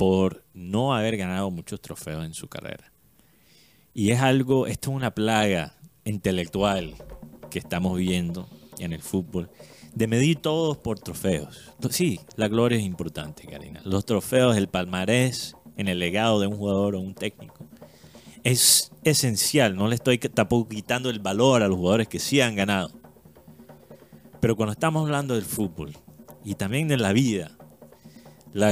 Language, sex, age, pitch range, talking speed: Spanish, male, 30-49, 90-130 Hz, 155 wpm